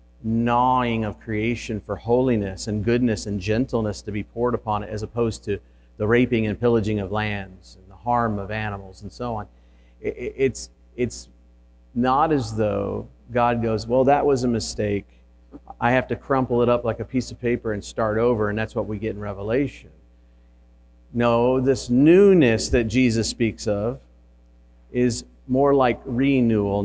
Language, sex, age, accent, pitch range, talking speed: English, male, 40-59, American, 100-120 Hz, 170 wpm